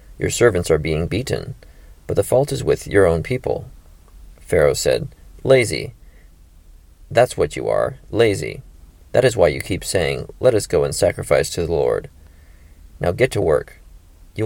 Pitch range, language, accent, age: 80-105 Hz, English, American, 30-49